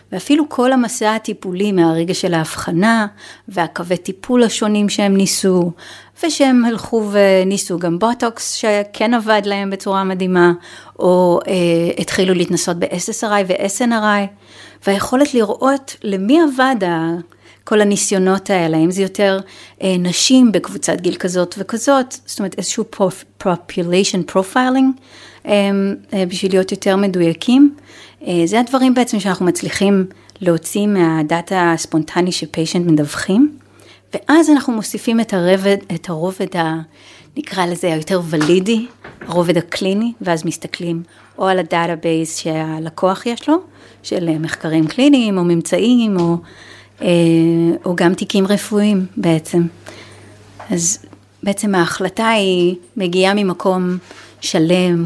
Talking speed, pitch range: 115 wpm, 170-215 Hz